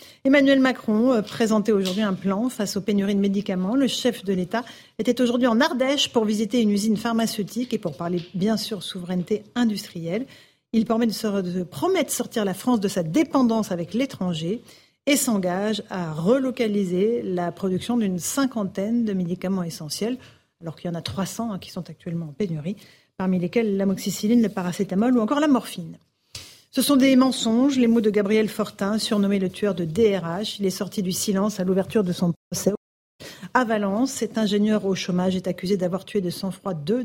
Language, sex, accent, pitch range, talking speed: French, female, French, 185-235 Hz, 180 wpm